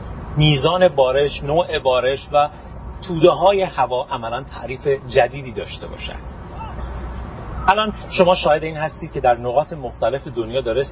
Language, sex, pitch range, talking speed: Persian, male, 110-155 Hz, 130 wpm